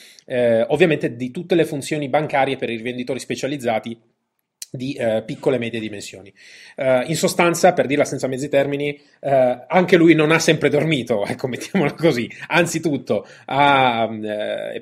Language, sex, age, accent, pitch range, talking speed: Italian, male, 20-39, native, 115-145 Hz, 150 wpm